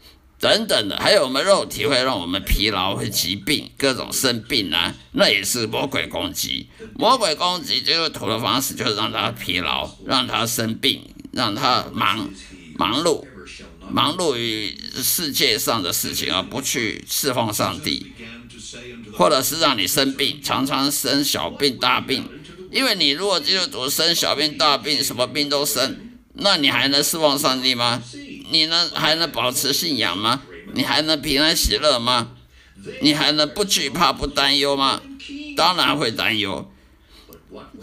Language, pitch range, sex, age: Chinese, 120-150 Hz, male, 50-69